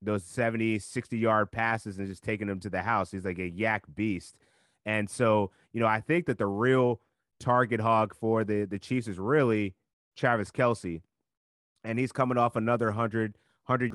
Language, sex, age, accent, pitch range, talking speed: English, male, 30-49, American, 100-120 Hz, 180 wpm